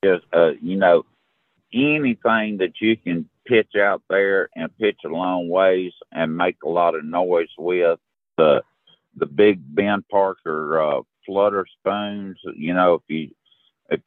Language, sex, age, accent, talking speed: English, male, 50-69, American, 155 wpm